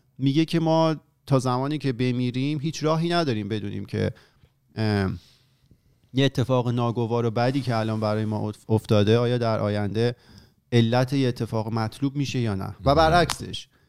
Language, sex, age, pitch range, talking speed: Persian, male, 30-49, 110-130 Hz, 145 wpm